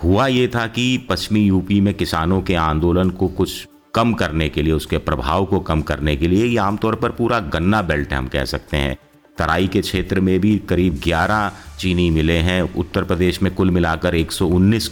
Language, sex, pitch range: Hindi, male, 80-95 Hz